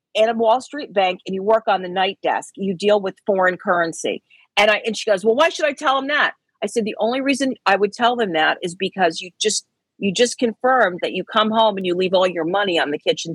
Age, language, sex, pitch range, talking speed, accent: 40-59, English, female, 200-255 Hz, 265 wpm, American